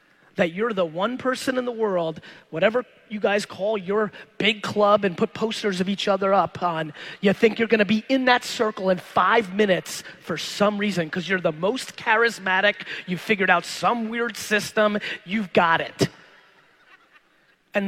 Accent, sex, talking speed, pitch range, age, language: American, male, 175 wpm, 190-230 Hz, 30-49, English